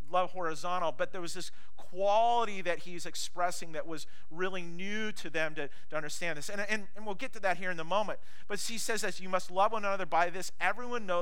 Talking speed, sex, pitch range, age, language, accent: 235 wpm, male, 155-195 Hz, 40-59, English, American